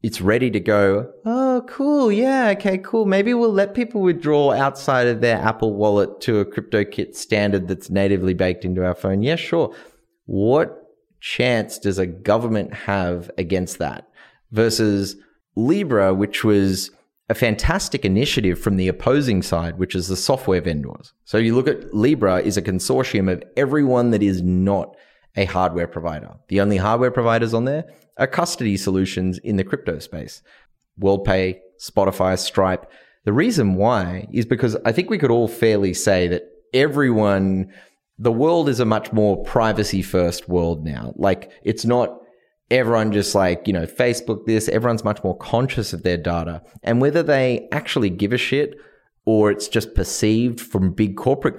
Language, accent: English, Australian